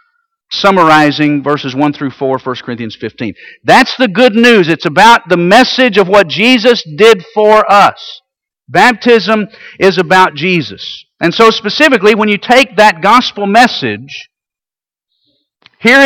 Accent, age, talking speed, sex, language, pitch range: American, 50-69, 135 wpm, male, English, 185-240 Hz